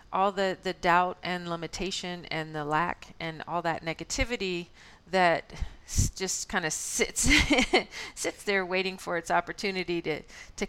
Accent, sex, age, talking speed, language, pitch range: American, female, 40-59, 145 wpm, English, 165-200 Hz